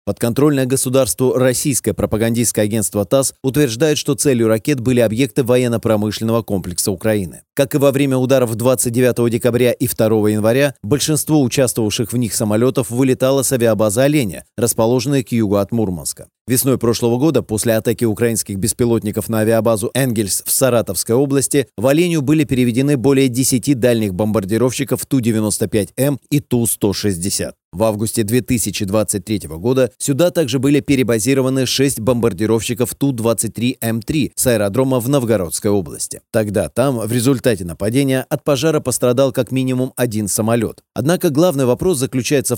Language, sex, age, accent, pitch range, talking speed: Russian, male, 30-49, native, 110-135 Hz, 135 wpm